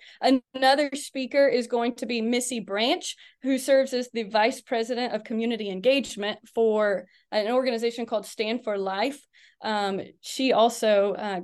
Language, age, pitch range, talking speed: English, 30-49, 215-280 Hz, 145 wpm